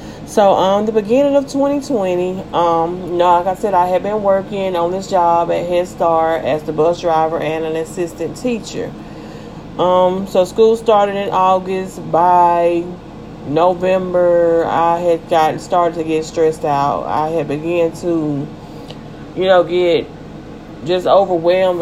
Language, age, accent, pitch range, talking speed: English, 30-49, American, 165-185 Hz, 155 wpm